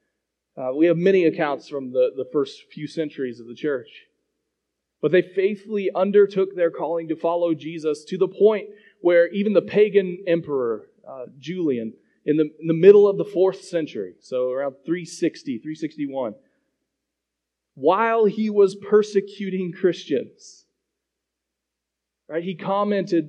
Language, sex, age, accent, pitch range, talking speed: English, male, 30-49, American, 165-205 Hz, 140 wpm